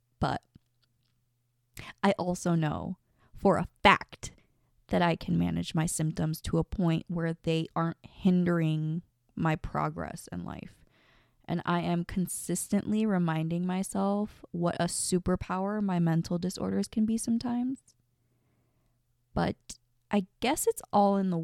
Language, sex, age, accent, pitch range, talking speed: English, female, 20-39, American, 155-225 Hz, 130 wpm